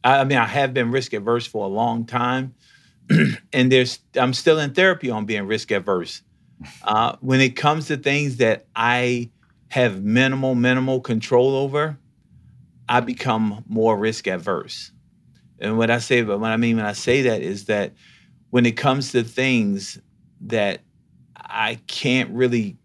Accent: American